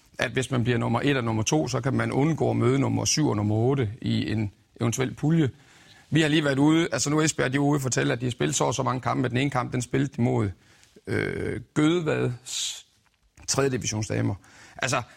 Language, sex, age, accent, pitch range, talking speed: Danish, male, 40-59, native, 115-145 Hz, 220 wpm